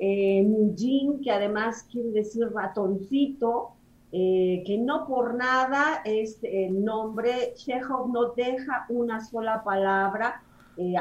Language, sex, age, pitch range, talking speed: Spanish, female, 40-59, 200-270 Hz, 115 wpm